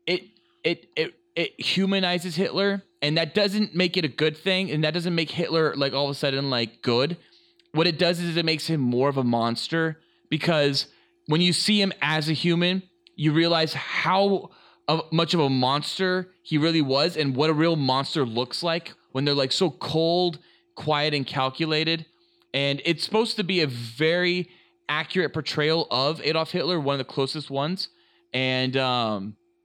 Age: 20-39